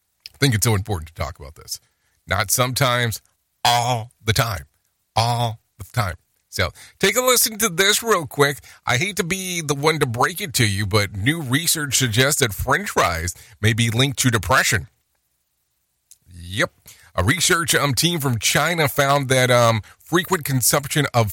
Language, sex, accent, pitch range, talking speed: English, male, American, 100-135 Hz, 170 wpm